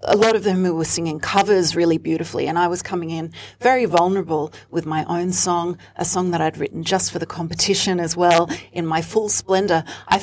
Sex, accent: female, Australian